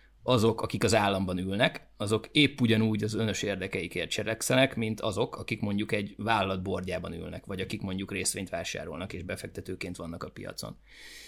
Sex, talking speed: male, 155 wpm